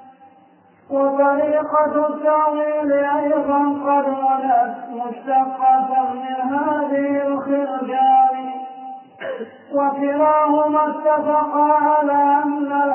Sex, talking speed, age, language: male, 65 wpm, 40-59, Arabic